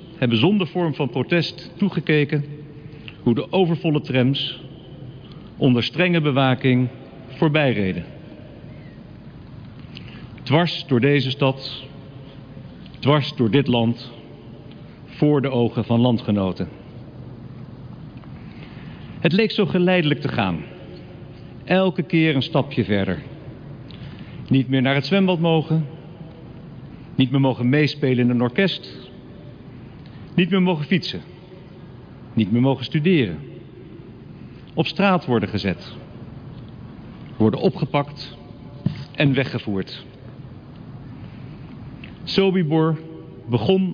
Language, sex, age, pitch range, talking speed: English, male, 50-69, 125-160 Hz, 95 wpm